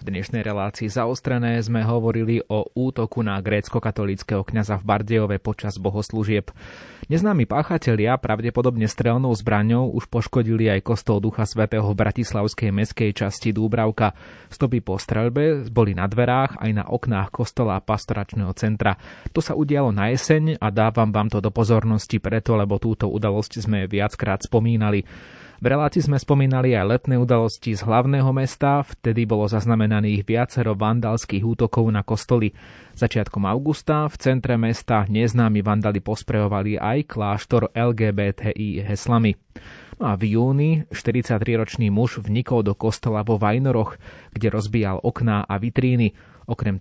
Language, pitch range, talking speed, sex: Slovak, 105-120 Hz, 135 wpm, male